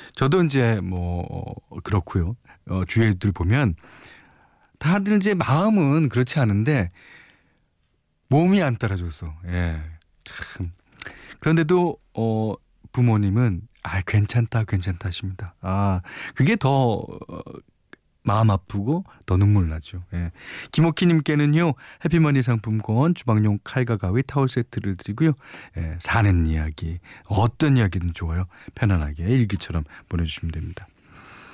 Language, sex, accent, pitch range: Korean, male, native, 90-140 Hz